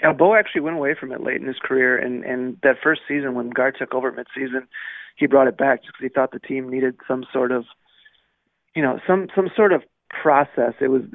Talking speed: 230 wpm